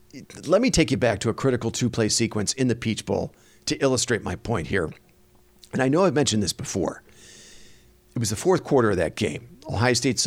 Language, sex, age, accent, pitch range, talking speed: English, male, 50-69, American, 100-125 Hz, 210 wpm